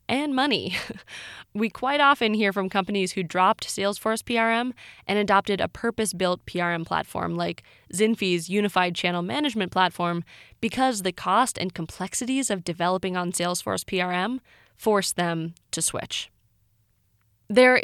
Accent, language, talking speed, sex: American, English, 130 wpm, female